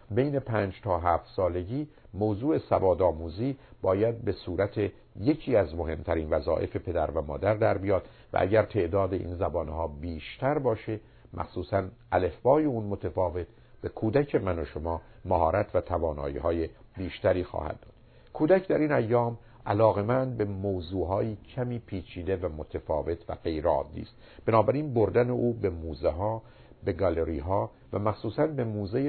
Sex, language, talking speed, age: male, Persian, 140 wpm, 50-69